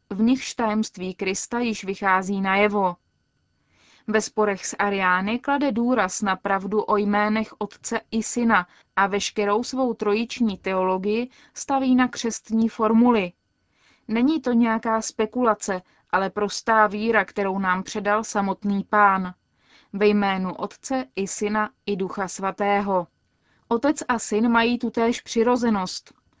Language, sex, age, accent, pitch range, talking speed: Czech, female, 20-39, native, 205-230 Hz, 125 wpm